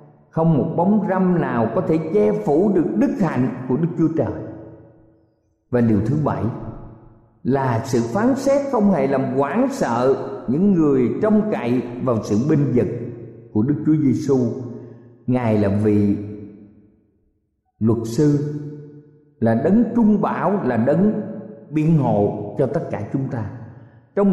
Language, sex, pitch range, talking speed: Vietnamese, male, 120-195 Hz, 150 wpm